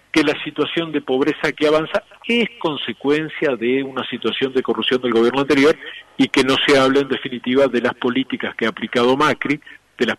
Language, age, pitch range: Spanish, 40-59, 125-150 Hz